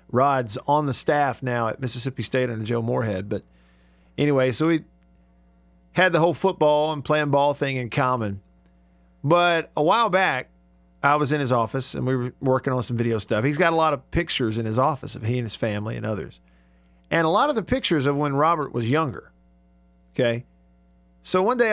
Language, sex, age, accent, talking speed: English, male, 40-59, American, 200 wpm